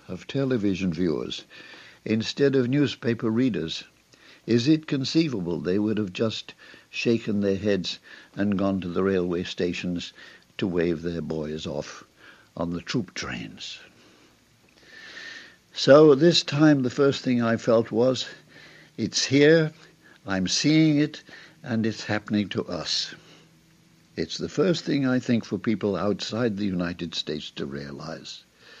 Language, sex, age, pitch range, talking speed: English, male, 60-79, 95-135 Hz, 135 wpm